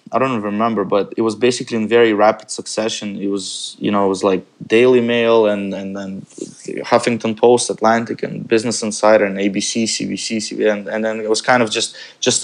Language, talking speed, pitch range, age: English, 205 wpm, 100-115 Hz, 20-39